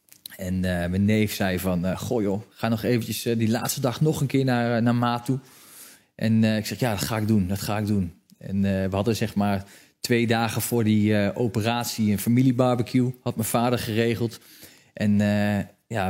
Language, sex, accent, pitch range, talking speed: Dutch, male, Dutch, 105-125 Hz, 215 wpm